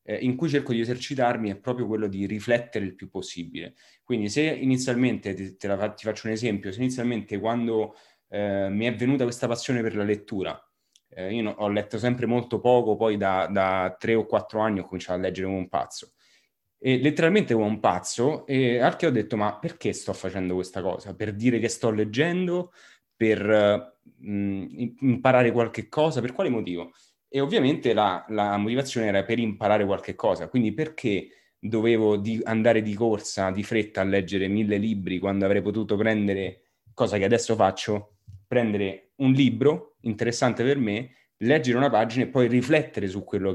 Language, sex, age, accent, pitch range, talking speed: English, male, 30-49, Italian, 100-125 Hz, 180 wpm